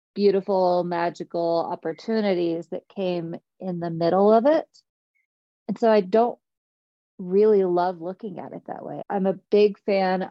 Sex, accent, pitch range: female, American, 175-215 Hz